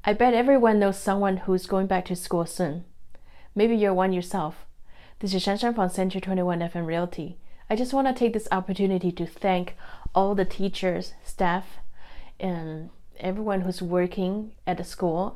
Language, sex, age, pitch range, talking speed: English, female, 30-49, 175-200 Hz, 170 wpm